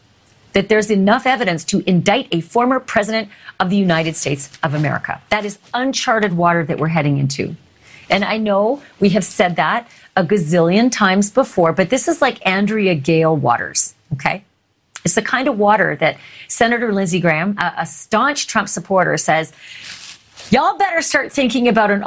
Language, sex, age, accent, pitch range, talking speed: English, female, 40-59, American, 155-215 Hz, 170 wpm